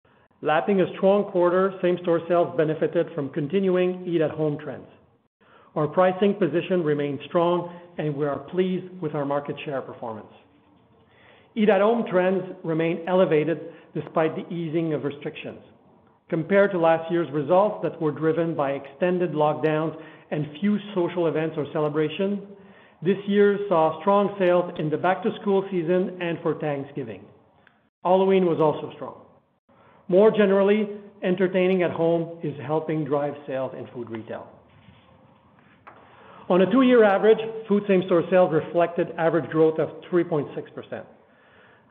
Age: 40-59